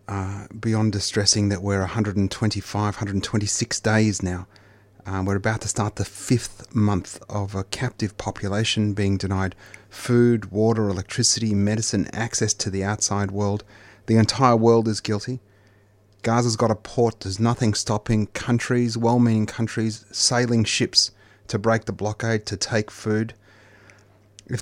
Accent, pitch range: Australian, 100-115 Hz